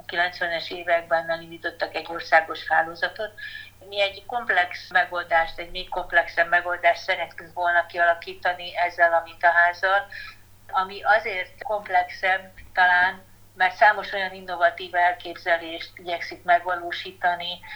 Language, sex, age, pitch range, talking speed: Hungarian, female, 50-69, 170-190 Hz, 110 wpm